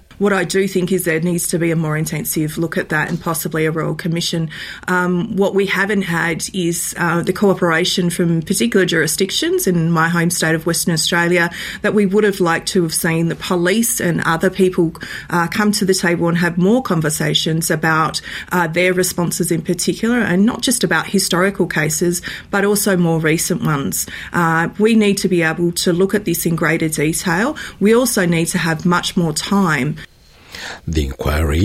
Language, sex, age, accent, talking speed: English, female, 30-49, Australian, 190 wpm